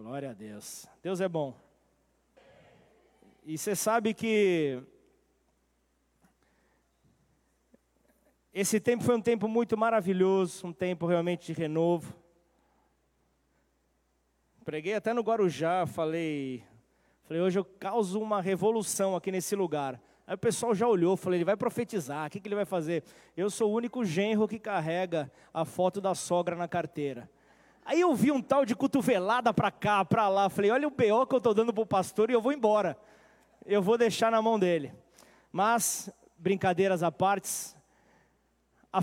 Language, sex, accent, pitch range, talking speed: Portuguese, male, Brazilian, 165-225 Hz, 155 wpm